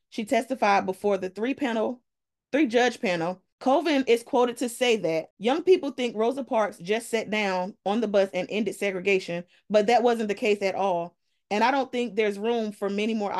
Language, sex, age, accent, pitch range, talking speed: English, female, 20-39, American, 195-245 Hz, 200 wpm